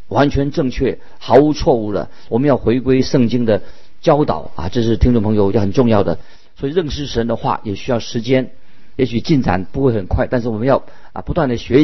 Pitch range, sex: 115-145 Hz, male